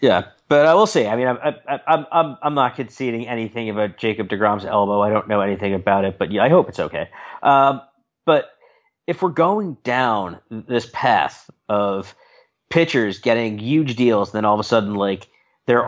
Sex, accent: male, American